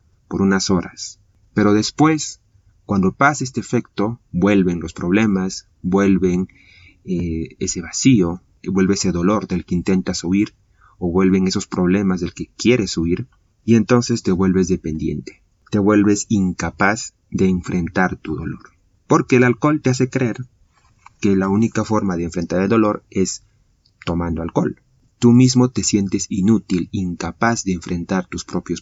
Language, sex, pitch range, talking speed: Spanish, male, 90-110 Hz, 145 wpm